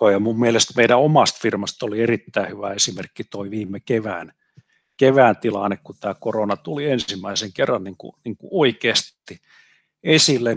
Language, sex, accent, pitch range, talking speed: Finnish, male, native, 105-120 Hz, 155 wpm